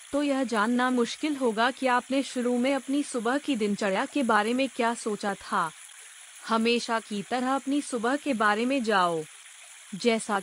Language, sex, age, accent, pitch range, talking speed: Hindi, female, 30-49, native, 210-255 Hz, 165 wpm